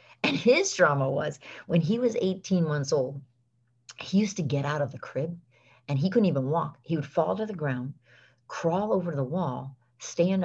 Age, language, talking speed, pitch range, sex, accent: 40-59, English, 195 wpm, 135-170 Hz, female, American